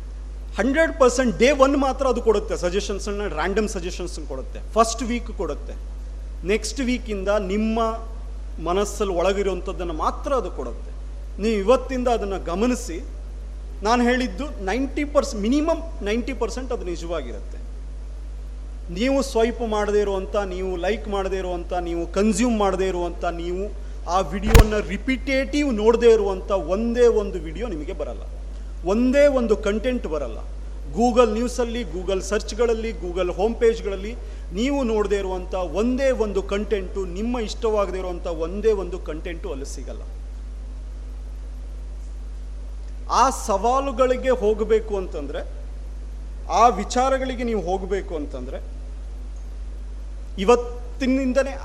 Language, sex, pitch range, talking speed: Kannada, male, 155-235 Hz, 110 wpm